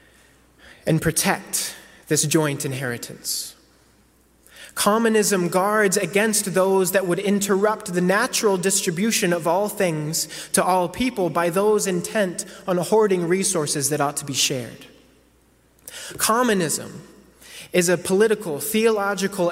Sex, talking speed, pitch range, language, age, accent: male, 115 wpm, 155-195 Hz, English, 20-39, American